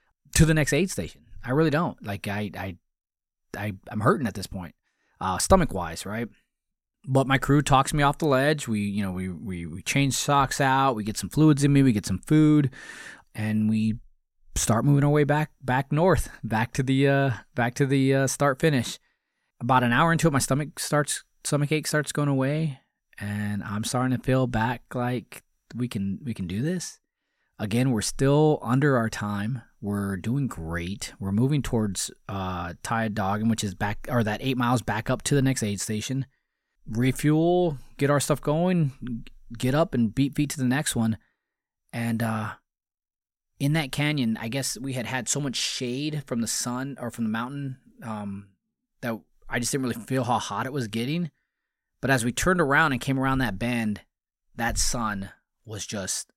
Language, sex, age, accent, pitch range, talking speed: English, male, 20-39, American, 110-140 Hz, 195 wpm